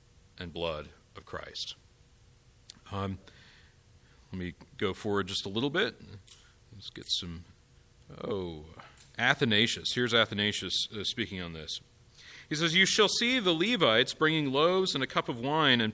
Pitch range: 105-150 Hz